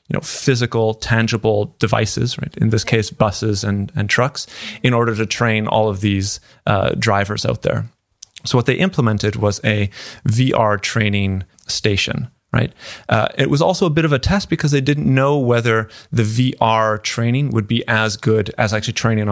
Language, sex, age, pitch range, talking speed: English, male, 30-49, 110-130 Hz, 180 wpm